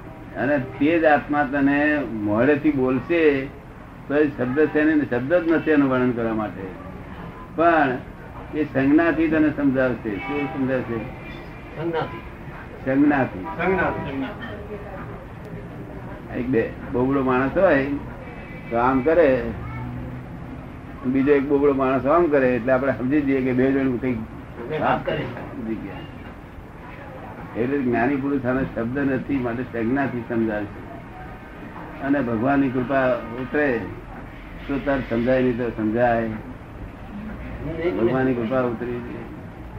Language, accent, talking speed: Gujarati, native, 85 wpm